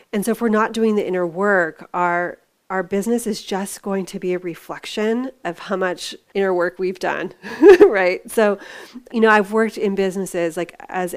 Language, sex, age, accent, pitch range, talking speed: English, female, 30-49, American, 180-205 Hz, 195 wpm